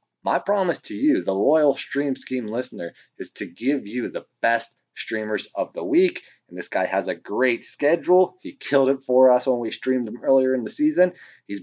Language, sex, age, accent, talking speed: English, male, 30-49, American, 205 wpm